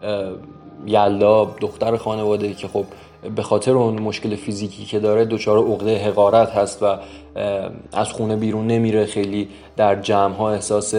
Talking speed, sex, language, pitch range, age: 140 wpm, male, Persian, 100-110 Hz, 20-39